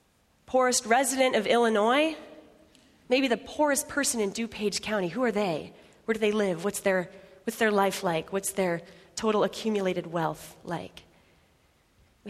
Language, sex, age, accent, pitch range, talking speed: English, female, 30-49, American, 215-275 Hz, 150 wpm